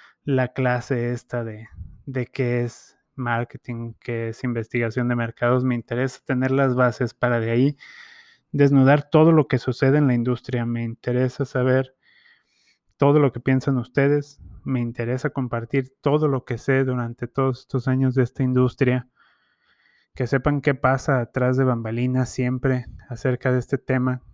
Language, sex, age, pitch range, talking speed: Spanish, male, 20-39, 120-140 Hz, 155 wpm